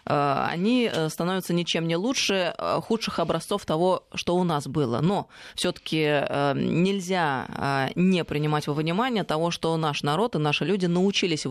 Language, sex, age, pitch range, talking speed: Russian, female, 20-39, 145-185 Hz, 140 wpm